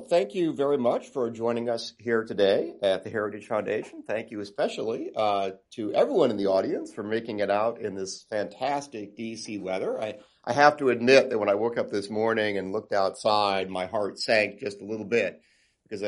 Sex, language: male, English